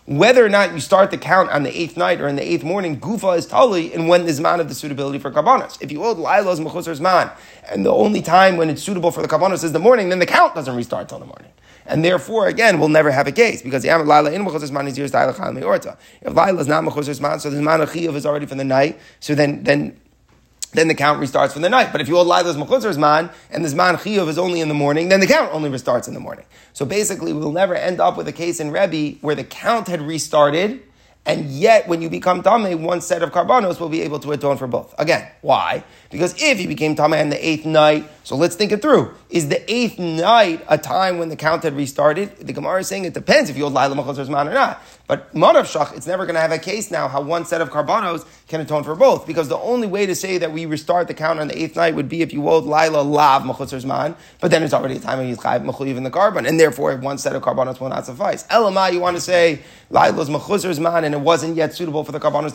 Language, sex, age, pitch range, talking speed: English, male, 30-49, 150-180 Hz, 265 wpm